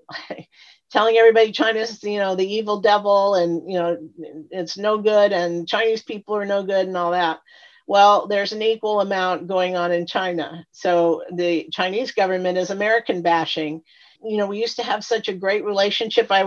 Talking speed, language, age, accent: 180 wpm, English, 50-69, American